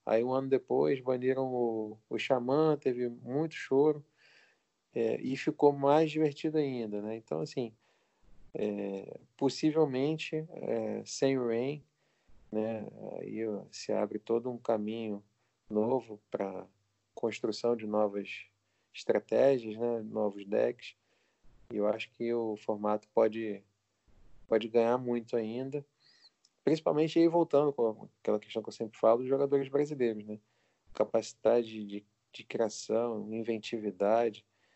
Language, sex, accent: Portuguese, male, Brazilian